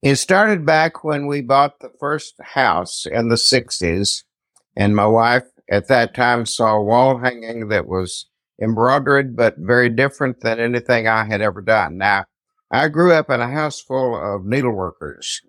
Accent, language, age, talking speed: American, English, 60-79, 170 wpm